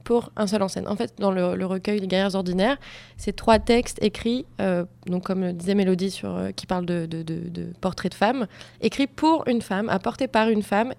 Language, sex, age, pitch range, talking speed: French, female, 20-39, 180-215 Hz, 230 wpm